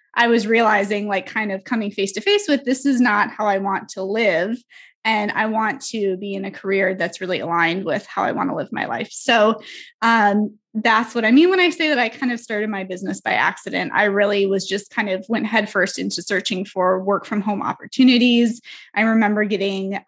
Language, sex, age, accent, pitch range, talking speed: English, female, 20-39, American, 200-235 Hz, 220 wpm